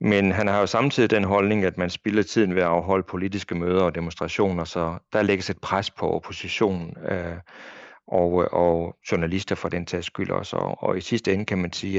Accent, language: native, Danish